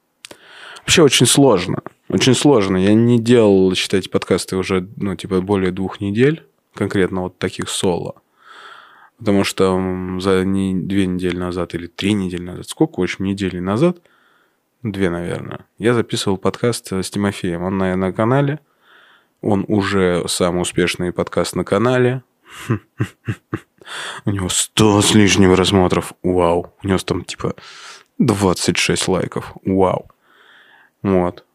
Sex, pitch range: male, 90-105 Hz